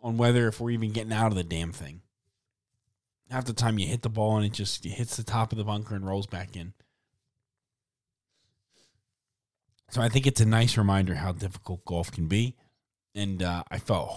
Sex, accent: male, American